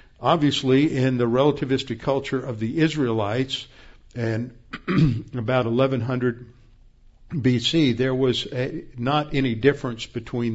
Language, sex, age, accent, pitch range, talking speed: English, male, 50-69, American, 115-140 Hz, 110 wpm